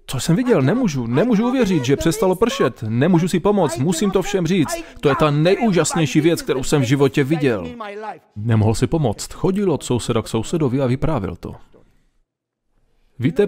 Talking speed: 170 wpm